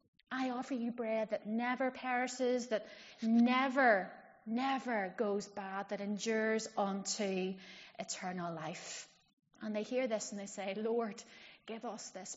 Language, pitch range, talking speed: English, 195-245 Hz, 135 wpm